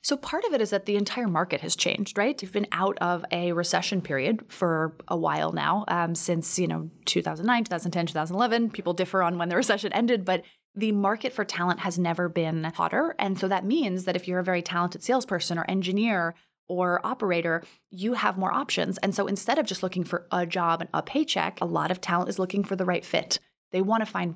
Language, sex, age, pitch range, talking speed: English, female, 20-39, 170-200 Hz, 225 wpm